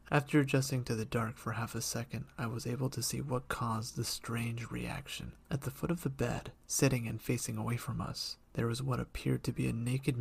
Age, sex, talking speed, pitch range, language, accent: 30-49, male, 230 wpm, 115-135 Hz, English, American